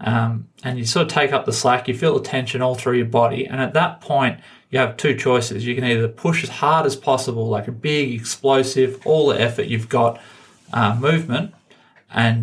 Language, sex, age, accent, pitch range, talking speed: English, male, 30-49, Australian, 115-130 Hz, 215 wpm